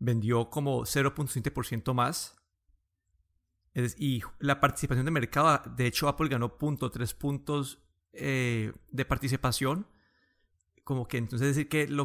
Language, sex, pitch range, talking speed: Spanish, male, 115-145 Hz, 135 wpm